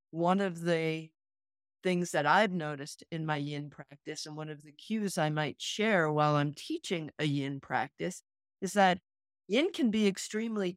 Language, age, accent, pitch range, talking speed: English, 50-69, American, 150-195 Hz, 175 wpm